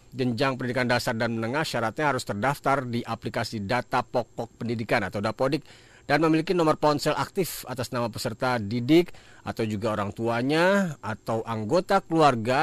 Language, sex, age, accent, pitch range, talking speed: Indonesian, male, 40-59, native, 115-140 Hz, 145 wpm